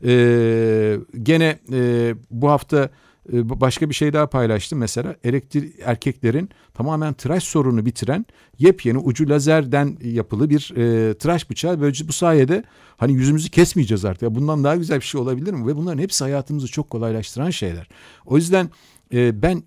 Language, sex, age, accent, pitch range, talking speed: Turkish, male, 50-69, native, 115-150 Hz, 160 wpm